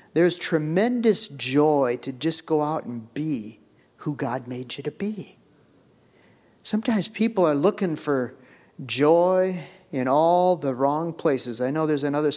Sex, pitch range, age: male, 130-175 Hz, 50-69